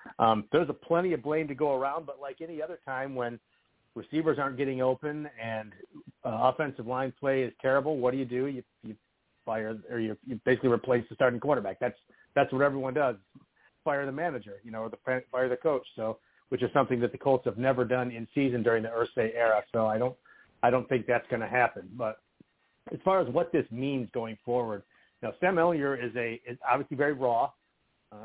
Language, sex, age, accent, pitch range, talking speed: English, male, 50-69, American, 120-140 Hz, 215 wpm